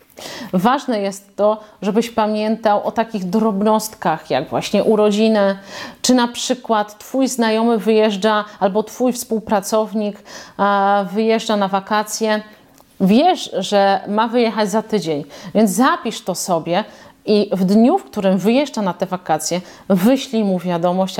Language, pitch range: Polish, 195-235 Hz